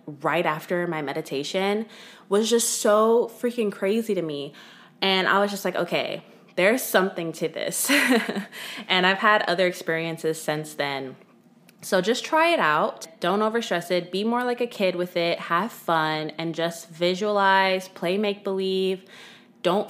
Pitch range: 160-215 Hz